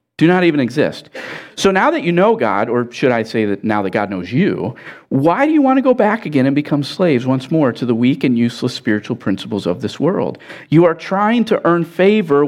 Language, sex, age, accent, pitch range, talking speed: English, male, 50-69, American, 115-165 Hz, 235 wpm